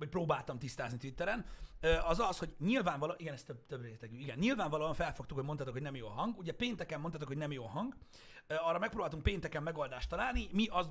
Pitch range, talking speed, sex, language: 135-190 Hz, 200 wpm, male, Hungarian